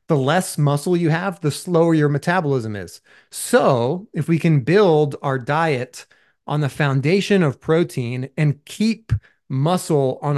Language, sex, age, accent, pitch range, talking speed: English, male, 30-49, American, 130-170 Hz, 150 wpm